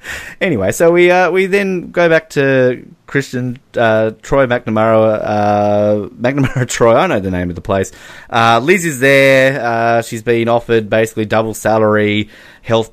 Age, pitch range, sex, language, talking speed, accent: 30-49, 100-125 Hz, male, English, 165 wpm, Australian